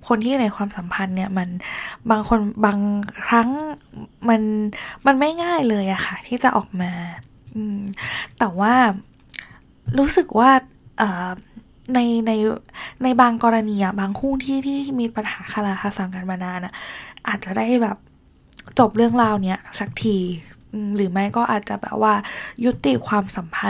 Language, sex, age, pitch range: Thai, female, 10-29, 195-240 Hz